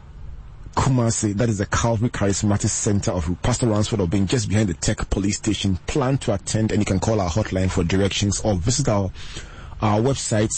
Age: 30-49